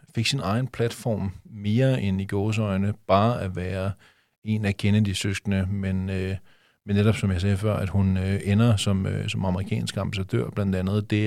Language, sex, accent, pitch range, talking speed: Danish, male, native, 100-110 Hz, 185 wpm